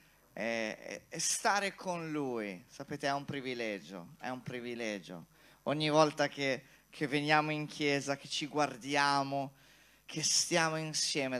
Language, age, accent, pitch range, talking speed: Italian, 30-49, native, 125-150 Hz, 125 wpm